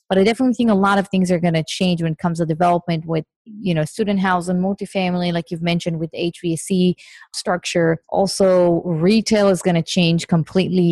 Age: 30-49